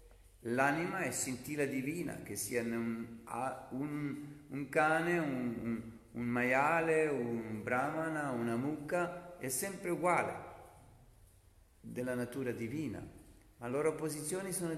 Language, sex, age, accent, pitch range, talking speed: Italian, male, 50-69, native, 115-155 Hz, 120 wpm